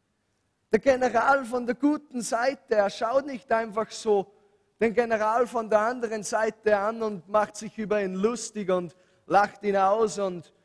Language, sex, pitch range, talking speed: English, male, 200-245 Hz, 165 wpm